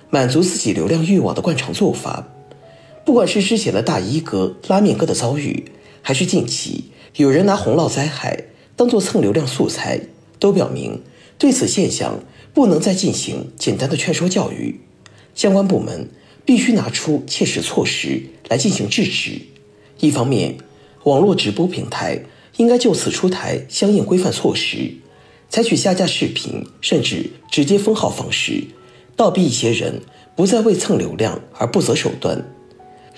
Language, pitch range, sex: Chinese, 145-220 Hz, male